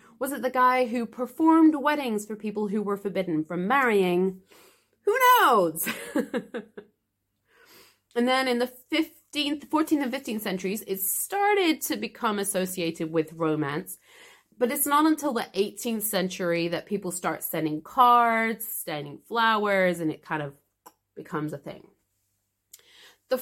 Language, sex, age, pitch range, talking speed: English, female, 30-49, 175-275 Hz, 140 wpm